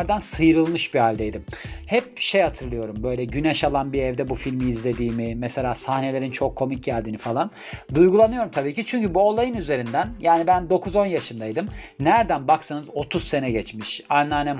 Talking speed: 150 wpm